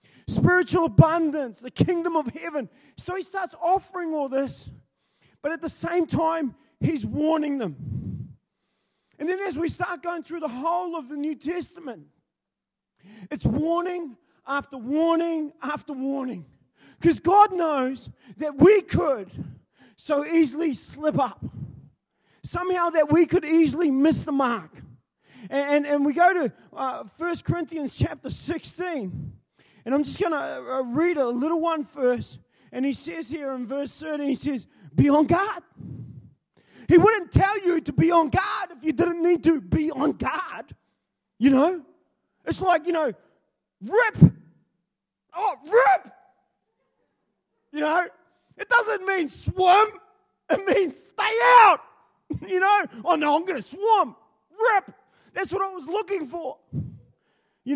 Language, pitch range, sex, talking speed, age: English, 280-360 Hz, male, 150 wpm, 40-59